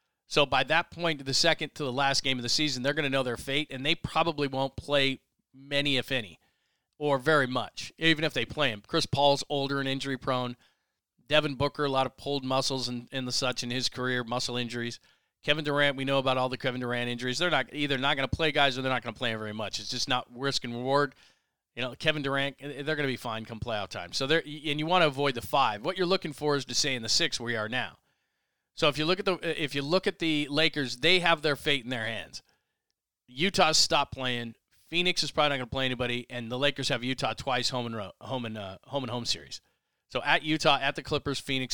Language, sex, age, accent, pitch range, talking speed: English, male, 40-59, American, 125-150 Hz, 250 wpm